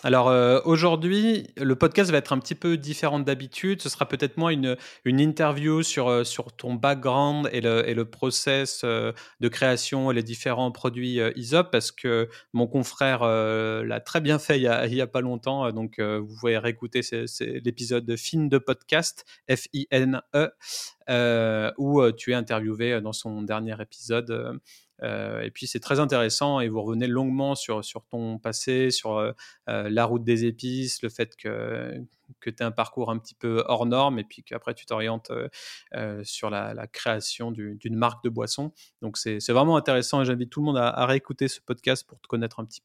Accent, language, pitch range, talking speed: French, French, 115-145 Hz, 195 wpm